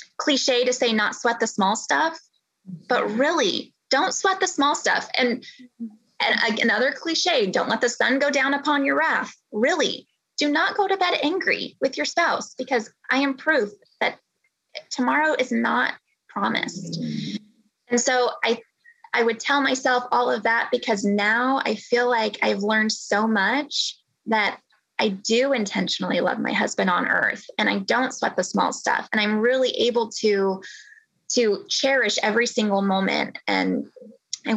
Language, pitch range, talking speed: English, 215-285 Hz, 165 wpm